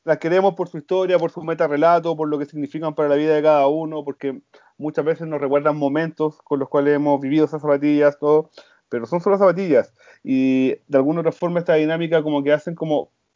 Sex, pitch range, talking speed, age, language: male, 140-165 Hz, 210 wpm, 40-59, Spanish